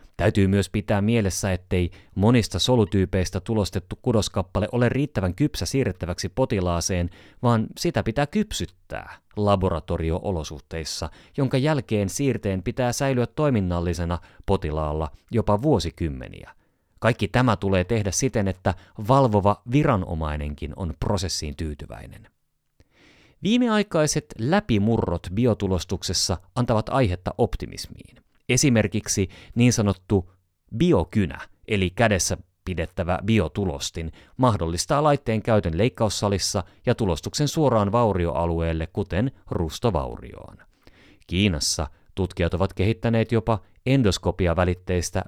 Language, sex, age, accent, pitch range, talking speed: Finnish, male, 30-49, native, 90-115 Hz, 90 wpm